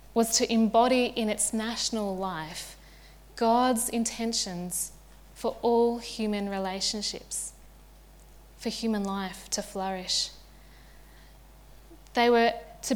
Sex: female